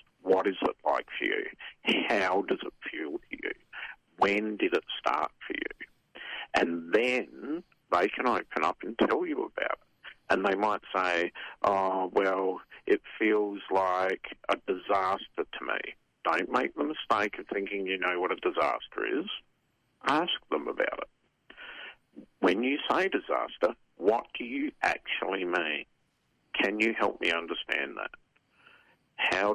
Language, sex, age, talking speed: English, male, 50-69, 150 wpm